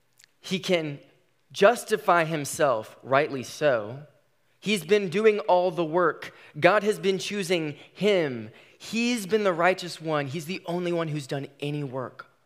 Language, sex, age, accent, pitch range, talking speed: English, male, 20-39, American, 115-150 Hz, 145 wpm